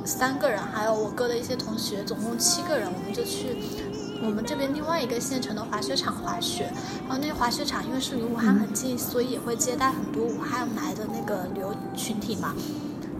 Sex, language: female, Chinese